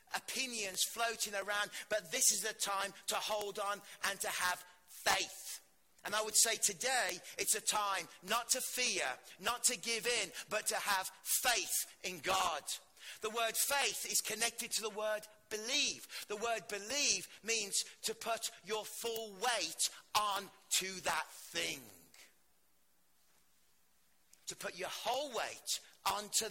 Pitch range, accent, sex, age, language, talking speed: 185-220 Hz, British, male, 40-59, English, 145 wpm